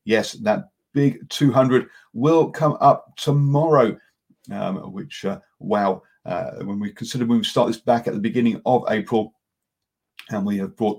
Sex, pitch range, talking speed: male, 100-145 Hz, 165 wpm